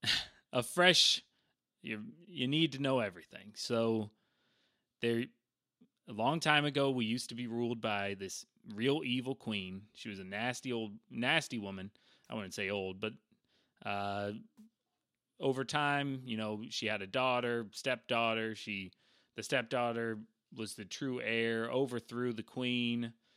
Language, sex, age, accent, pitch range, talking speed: English, male, 20-39, American, 105-125 Hz, 145 wpm